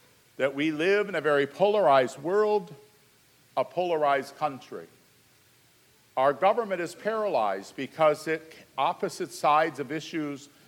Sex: male